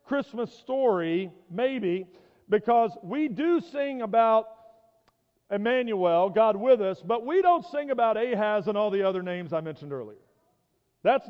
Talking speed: 145 wpm